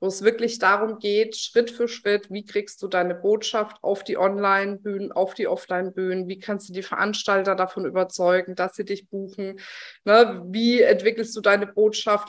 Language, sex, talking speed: German, female, 175 wpm